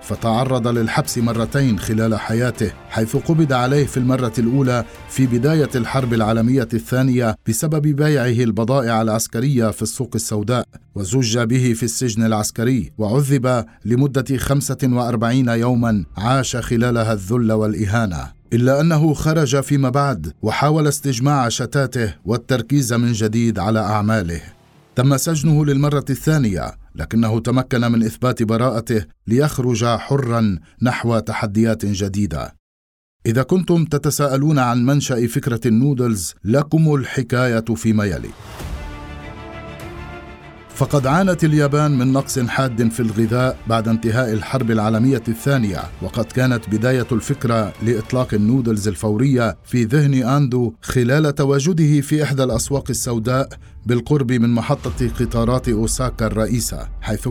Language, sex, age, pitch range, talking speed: Arabic, male, 50-69, 110-135 Hz, 115 wpm